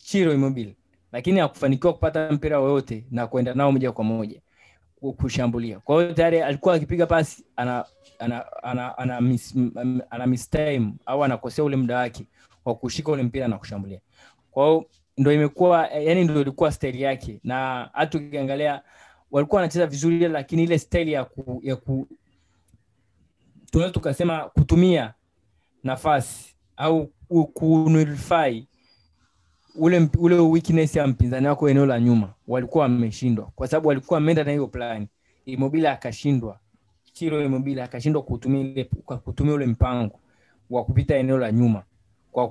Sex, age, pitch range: male, 20-39, 120-150 Hz